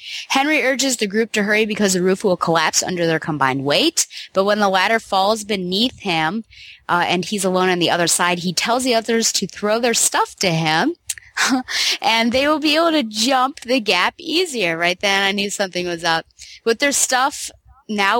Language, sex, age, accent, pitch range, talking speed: English, female, 20-39, American, 170-230 Hz, 200 wpm